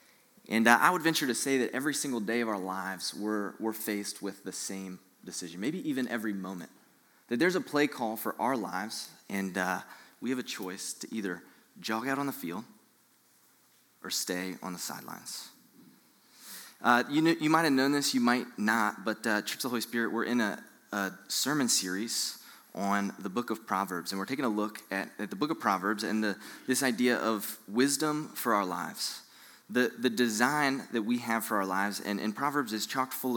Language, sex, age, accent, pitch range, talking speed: English, male, 20-39, American, 105-130 Hz, 205 wpm